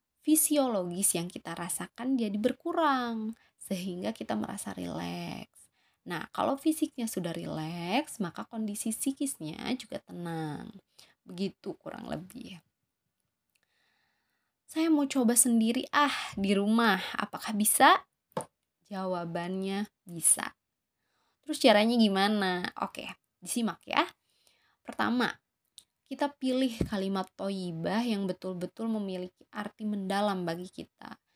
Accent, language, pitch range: native, Indonesian, 185-245 Hz